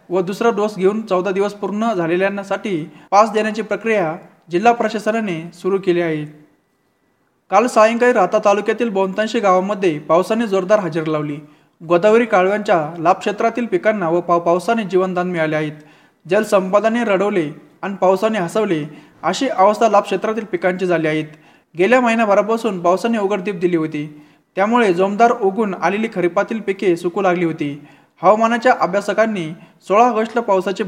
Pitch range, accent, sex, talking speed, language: 170-215 Hz, native, male, 130 wpm, Marathi